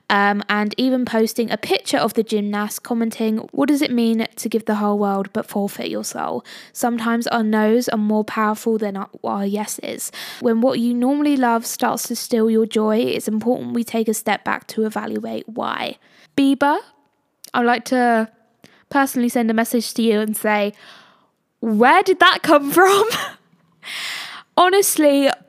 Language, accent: English, British